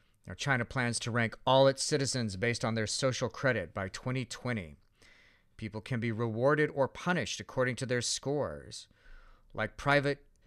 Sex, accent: male, American